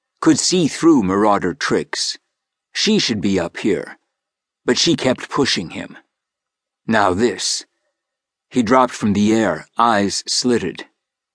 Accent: American